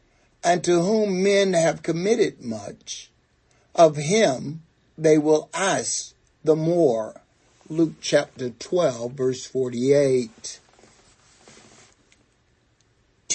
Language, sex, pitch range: English, male, 130-170 Hz